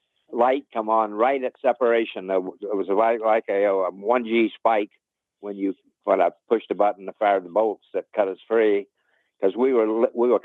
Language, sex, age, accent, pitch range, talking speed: English, male, 60-79, American, 100-120 Hz, 190 wpm